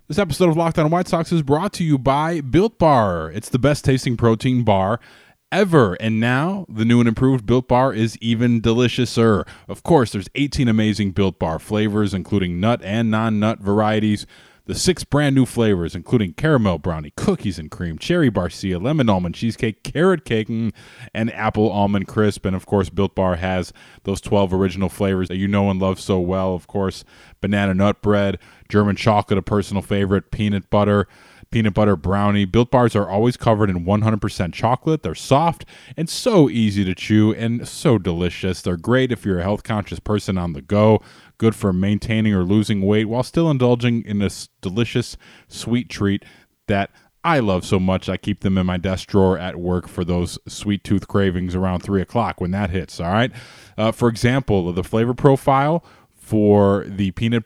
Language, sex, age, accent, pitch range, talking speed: English, male, 20-39, American, 95-125 Hz, 185 wpm